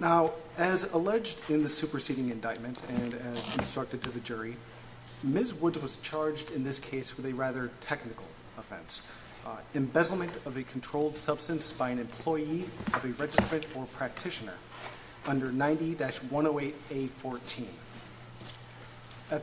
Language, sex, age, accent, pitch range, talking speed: English, male, 30-49, American, 125-155 Hz, 130 wpm